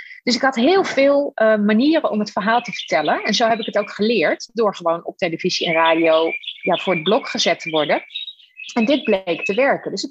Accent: Dutch